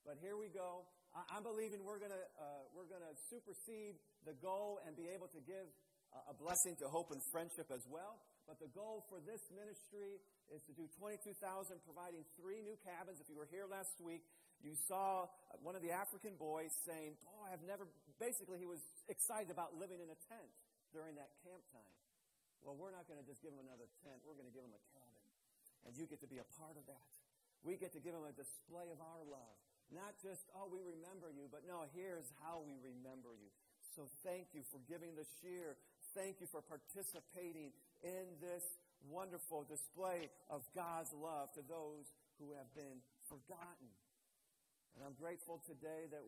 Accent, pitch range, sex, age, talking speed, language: American, 150-185 Hz, male, 50-69, 195 wpm, English